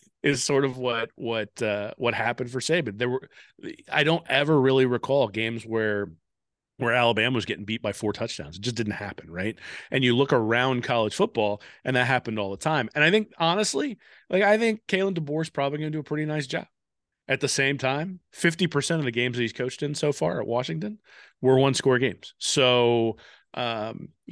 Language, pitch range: English, 115-145 Hz